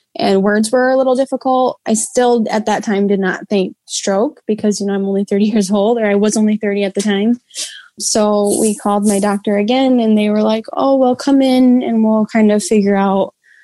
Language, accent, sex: English, American, female